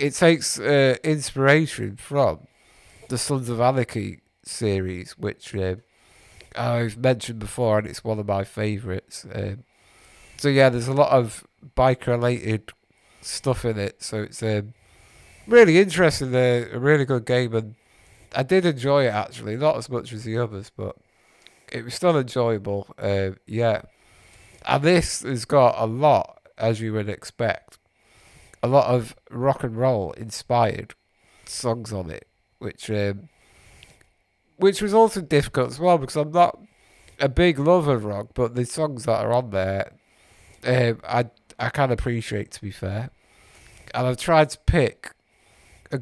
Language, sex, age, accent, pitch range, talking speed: English, male, 50-69, British, 105-135 Hz, 155 wpm